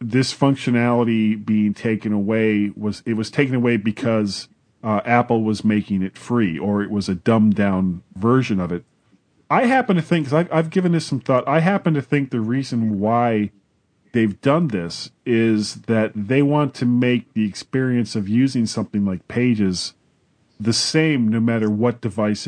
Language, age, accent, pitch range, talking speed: English, 40-59, American, 105-130 Hz, 175 wpm